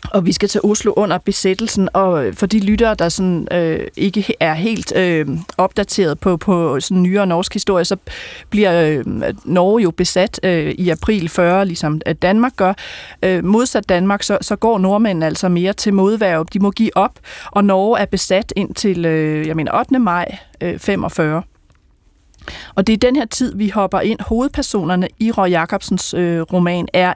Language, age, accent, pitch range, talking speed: Danish, 30-49, native, 180-215 Hz, 180 wpm